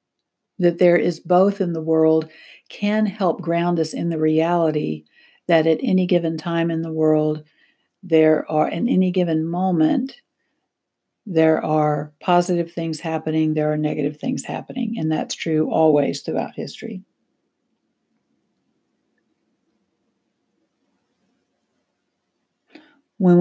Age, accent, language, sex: 60-79, American, English, female